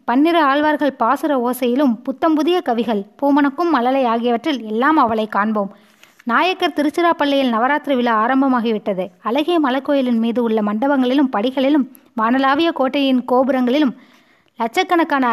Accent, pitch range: native, 235-295 Hz